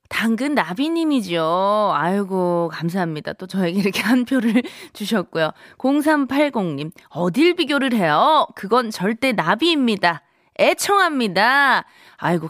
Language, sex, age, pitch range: Korean, female, 20-39, 170-245 Hz